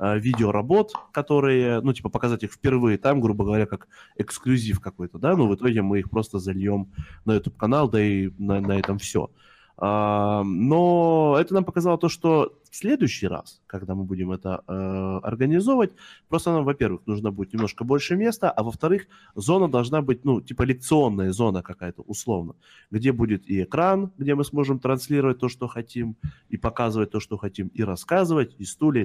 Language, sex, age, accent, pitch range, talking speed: Ukrainian, male, 20-39, native, 105-135 Hz, 170 wpm